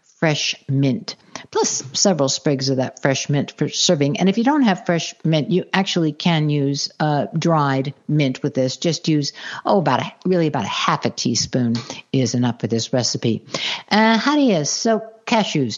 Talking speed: 185 wpm